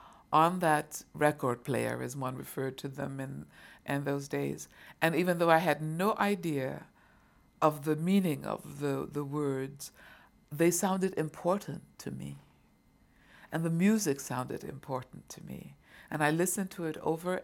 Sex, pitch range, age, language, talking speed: female, 135-165 Hz, 60-79, English, 155 wpm